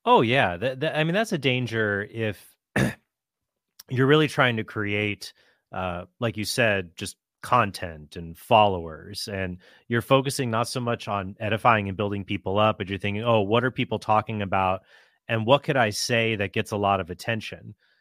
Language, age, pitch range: English, 30-49, 100-125 Hz